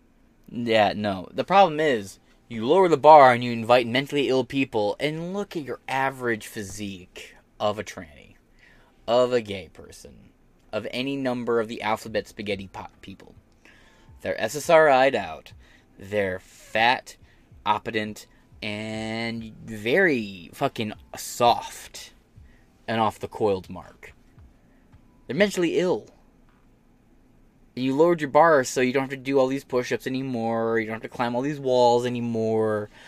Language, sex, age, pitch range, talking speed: English, male, 20-39, 110-145 Hz, 145 wpm